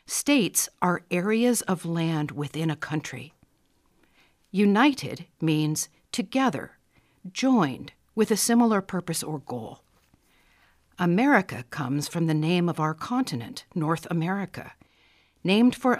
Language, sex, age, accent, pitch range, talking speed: English, female, 50-69, American, 145-210 Hz, 115 wpm